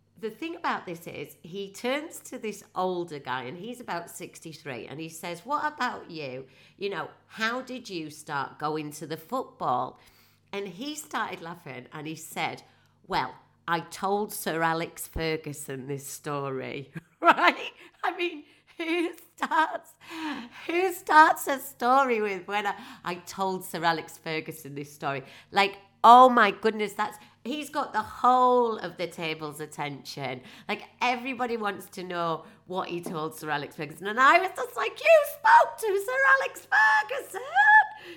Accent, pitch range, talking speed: British, 155-255 Hz, 155 wpm